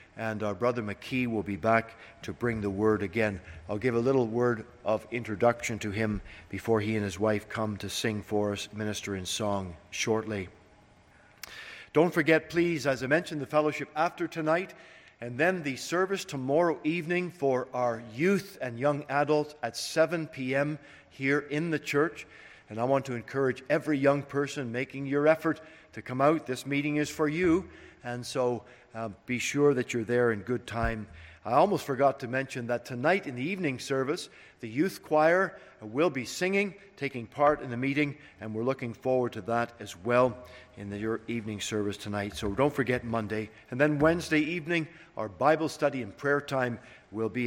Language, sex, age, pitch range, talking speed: English, male, 50-69, 110-150 Hz, 185 wpm